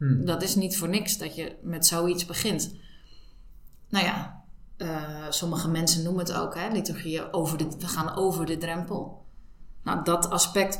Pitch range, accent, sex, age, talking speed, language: 165-220 Hz, Dutch, female, 20-39, 165 wpm, Dutch